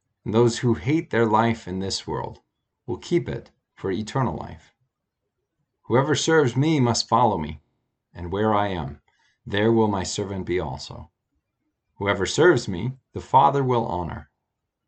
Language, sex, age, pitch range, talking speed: English, male, 40-59, 95-125 Hz, 150 wpm